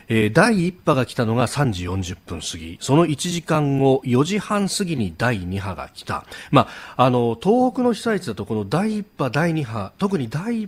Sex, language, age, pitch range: male, Japanese, 40-59, 100-165 Hz